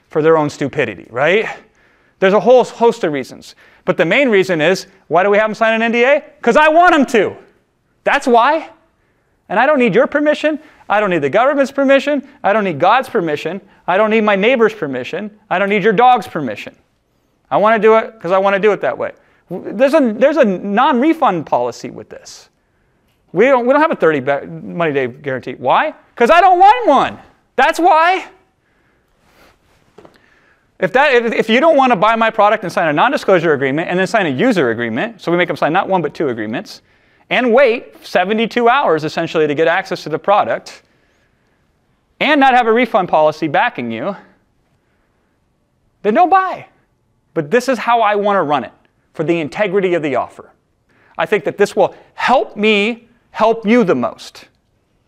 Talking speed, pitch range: 190 wpm, 180-270 Hz